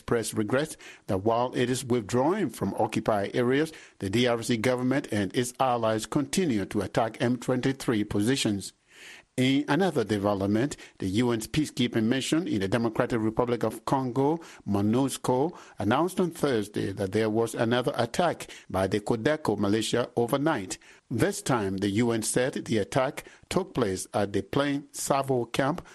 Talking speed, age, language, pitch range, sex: 145 wpm, 50-69, English, 110-140 Hz, male